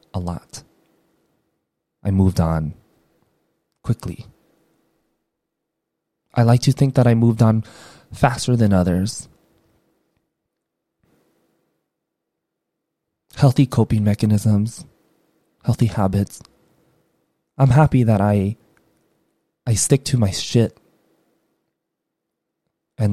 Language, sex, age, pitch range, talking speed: English, male, 20-39, 105-125 Hz, 85 wpm